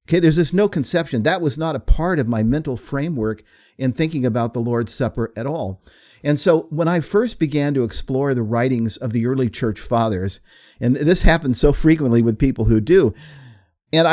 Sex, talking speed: male, 200 wpm